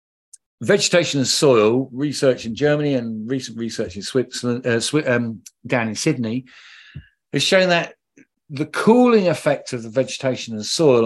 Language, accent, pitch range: English, British, 115-155 Hz